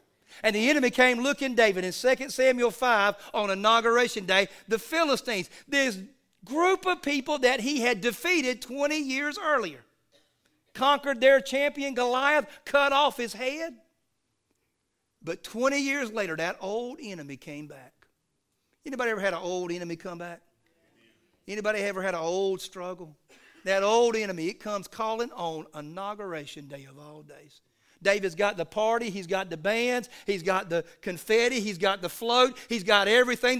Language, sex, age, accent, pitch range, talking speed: English, male, 50-69, American, 200-280 Hz, 155 wpm